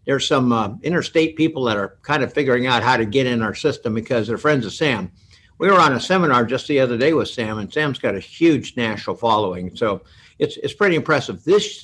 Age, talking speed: 60-79, 235 wpm